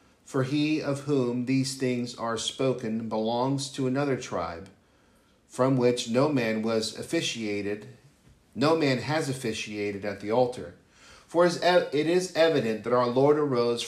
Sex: male